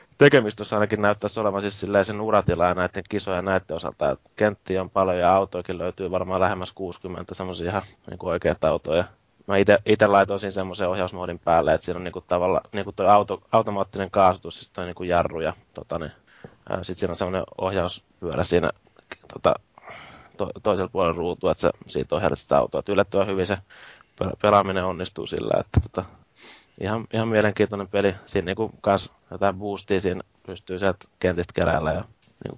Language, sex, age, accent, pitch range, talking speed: Finnish, male, 20-39, native, 90-100 Hz, 150 wpm